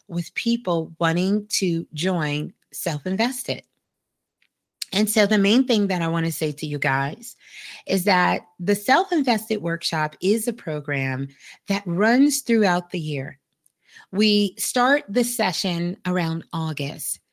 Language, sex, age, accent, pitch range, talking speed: English, female, 30-49, American, 165-210 Hz, 130 wpm